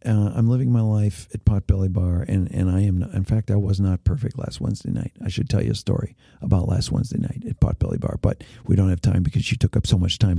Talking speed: 265 wpm